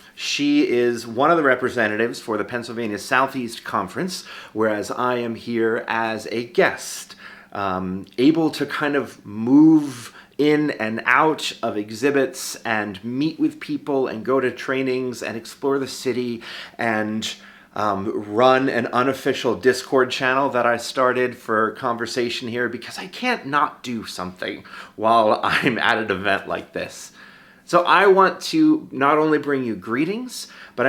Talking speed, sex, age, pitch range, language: 150 wpm, male, 30-49, 115-150 Hz, English